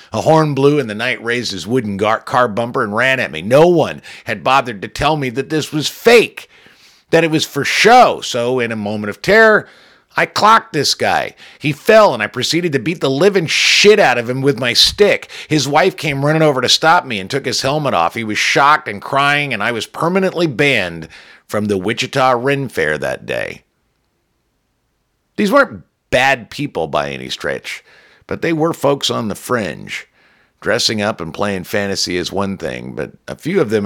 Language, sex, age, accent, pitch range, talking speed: English, male, 50-69, American, 95-140 Hz, 200 wpm